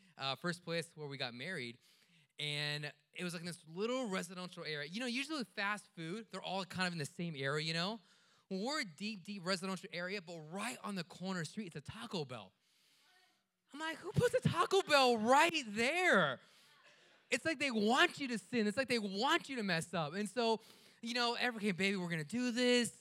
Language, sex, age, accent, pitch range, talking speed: English, male, 20-39, American, 180-260 Hz, 225 wpm